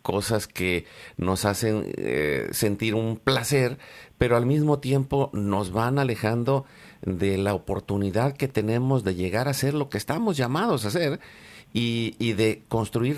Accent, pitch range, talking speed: Mexican, 100-130 Hz, 155 wpm